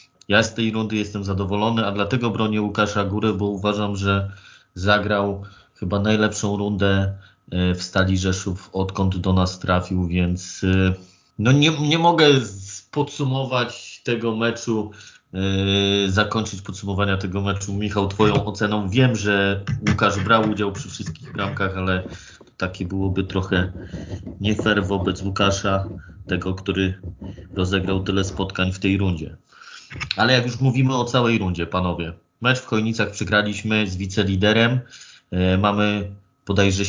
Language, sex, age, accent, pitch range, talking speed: Polish, male, 30-49, native, 95-110 Hz, 130 wpm